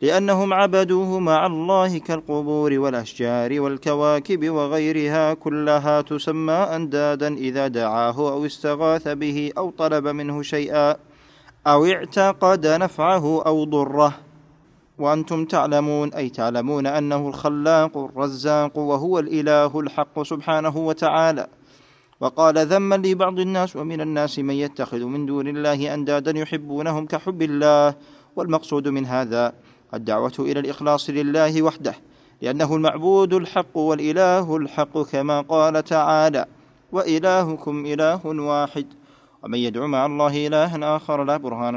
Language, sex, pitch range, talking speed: Arabic, male, 145-160 Hz, 115 wpm